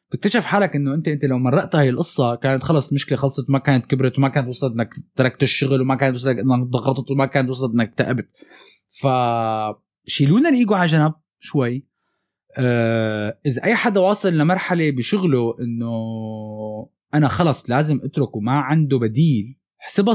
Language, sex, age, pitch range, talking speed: Arabic, male, 20-39, 120-155 Hz, 160 wpm